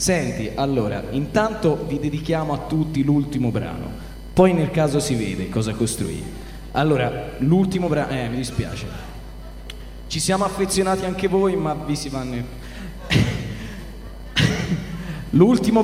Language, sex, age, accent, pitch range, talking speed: Italian, male, 20-39, native, 120-165 Hz, 120 wpm